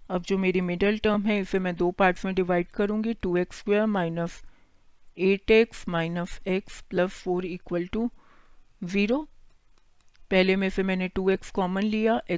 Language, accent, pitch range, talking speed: Hindi, native, 185-215 Hz, 150 wpm